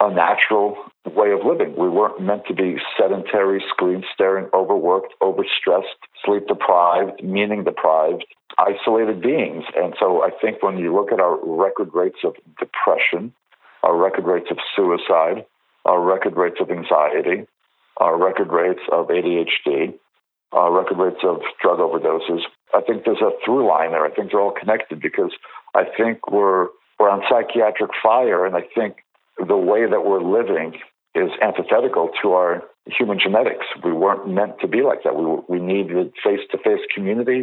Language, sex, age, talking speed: English, male, 50-69, 155 wpm